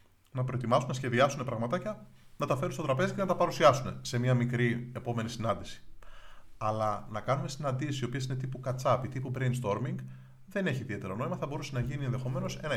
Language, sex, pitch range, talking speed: Greek, male, 110-130 Hz, 190 wpm